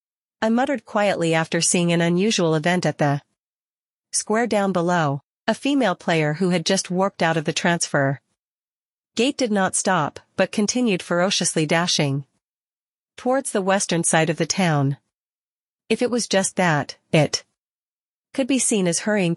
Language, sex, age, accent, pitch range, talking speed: English, female, 40-59, American, 160-205 Hz, 155 wpm